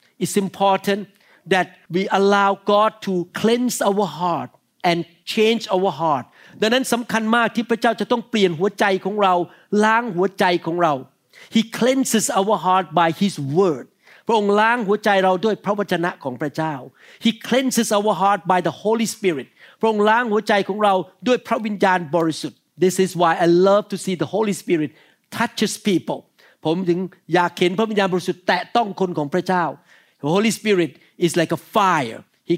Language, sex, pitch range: Thai, male, 180-225 Hz